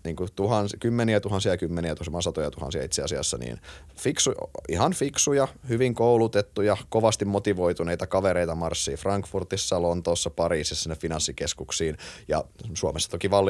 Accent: native